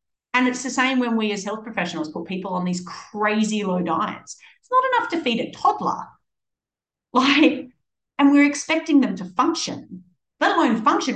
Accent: Australian